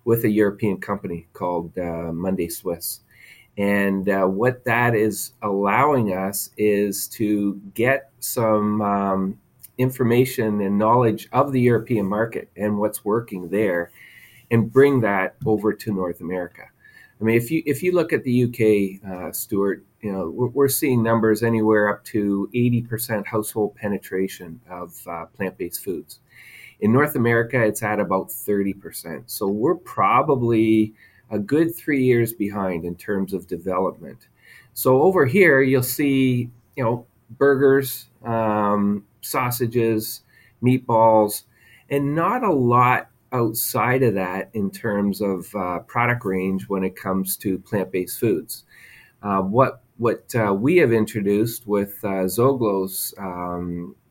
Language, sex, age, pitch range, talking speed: English, male, 40-59, 100-120 Hz, 140 wpm